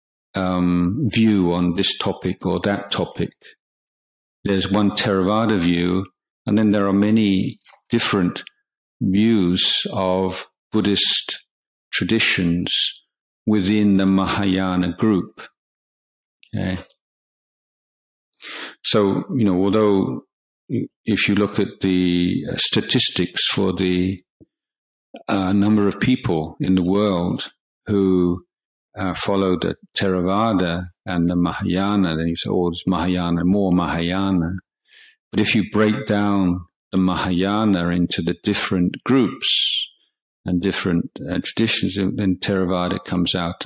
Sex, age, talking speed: male, 50-69, 110 wpm